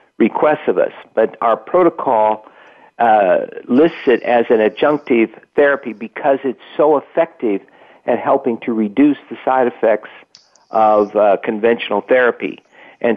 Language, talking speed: English, 130 wpm